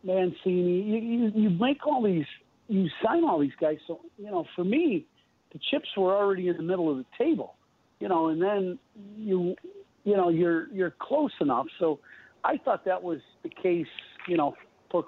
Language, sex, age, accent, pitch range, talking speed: English, male, 50-69, American, 145-190 Hz, 185 wpm